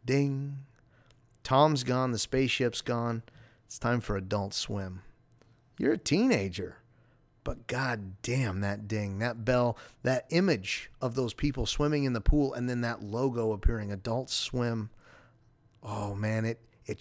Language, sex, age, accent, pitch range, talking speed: English, male, 30-49, American, 110-130 Hz, 145 wpm